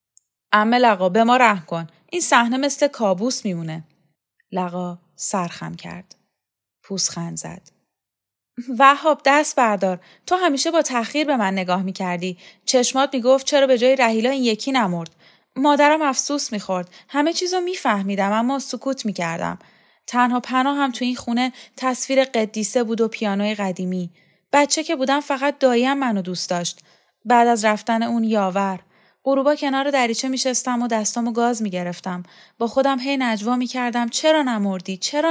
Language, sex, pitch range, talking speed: Persian, female, 185-260 Hz, 150 wpm